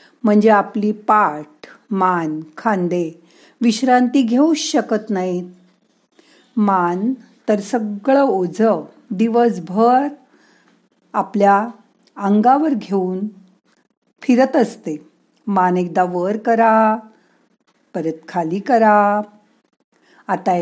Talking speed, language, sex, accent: 80 wpm, Marathi, female, native